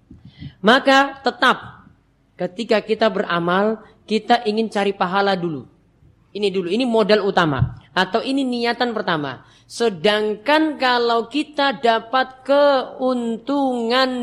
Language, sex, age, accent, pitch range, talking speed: Indonesian, female, 30-49, native, 195-250 Hz, 100 wpm